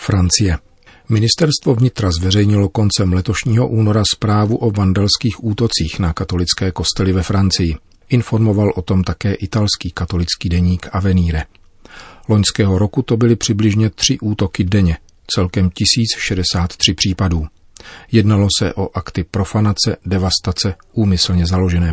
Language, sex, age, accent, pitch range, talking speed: Czech, male, 40-59, native, 90-105 Hz, 120 wpm